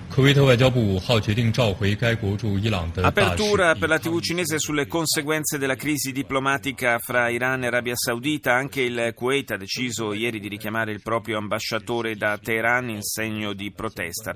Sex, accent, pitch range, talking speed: male, native, 105-135 Hz, 135 wpm